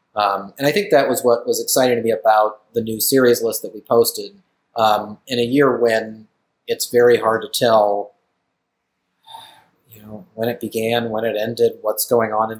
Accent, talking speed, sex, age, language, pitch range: American, 195 wpm, male, 30-49, English, 110-130 Hz